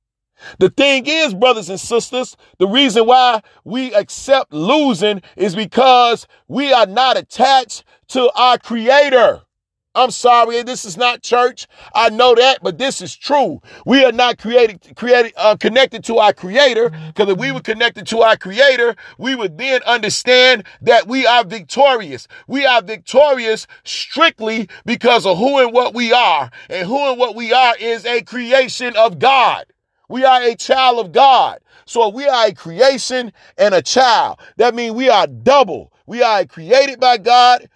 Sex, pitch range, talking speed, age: male, 220-265 Hz, 170 wpm, 40-59